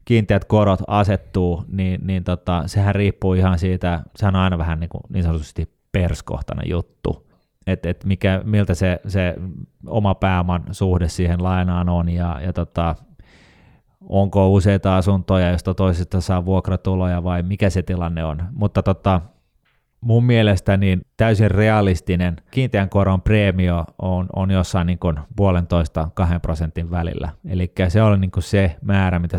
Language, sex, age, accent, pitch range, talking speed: Finnish, male, 20-39, native, 85-100 Hz, 145 wpm